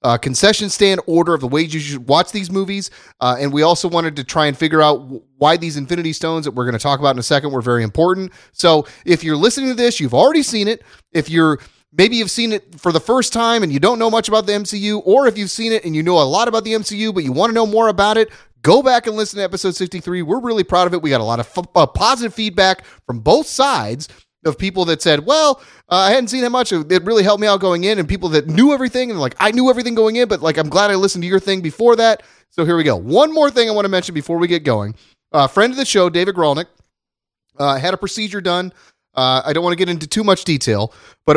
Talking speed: 275 wpm